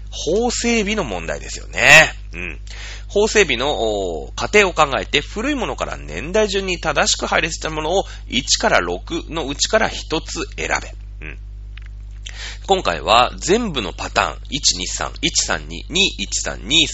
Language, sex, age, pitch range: Japanese, male, 30-49, 100-170 Hz